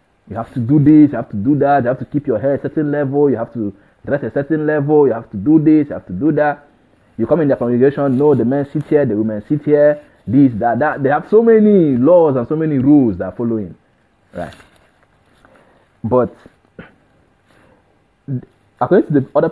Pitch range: 100-145 Hz